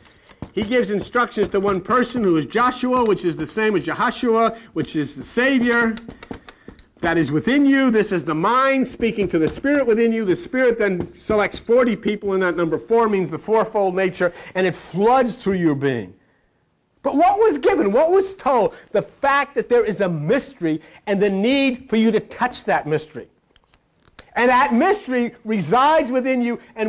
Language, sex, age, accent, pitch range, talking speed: English, male, 50-69, American, 195-255 Hz, 185 wpm